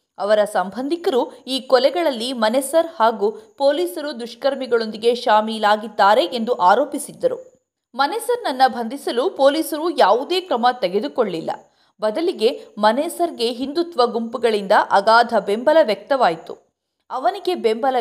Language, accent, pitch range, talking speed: Kannada, native, 225-320 Hz, 85 wpm